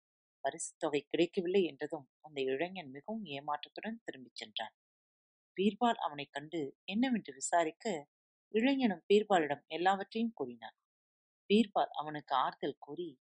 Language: Tamil